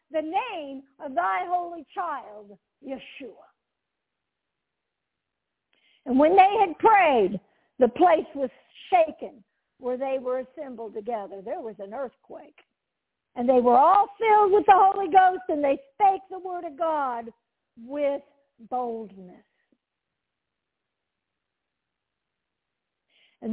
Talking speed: 110 wpm